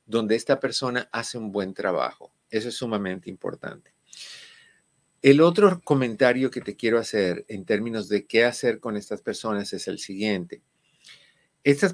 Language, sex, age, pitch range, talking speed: Spanish, male, 50-69, 105-140 Hz, 150 wpm